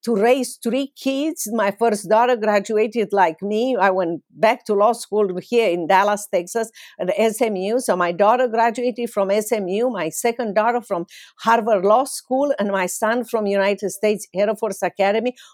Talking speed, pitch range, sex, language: 170 wpm, 205-255 Hz, female, English